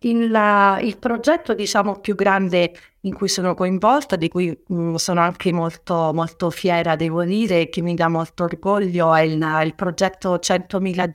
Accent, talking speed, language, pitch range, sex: native, 155 wpm, Italian, 165-200 Hz, female